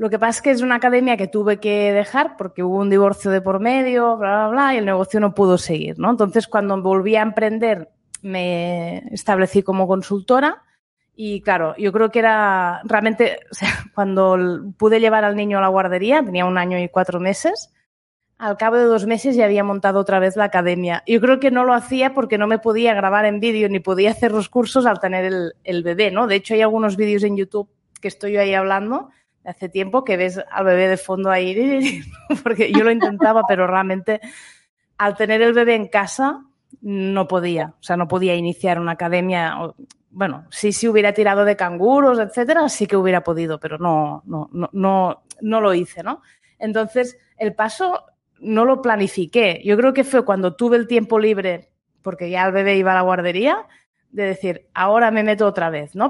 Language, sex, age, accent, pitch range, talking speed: Spanish, female, 20-39, Spanish, 190-230 Hz, 205 wpm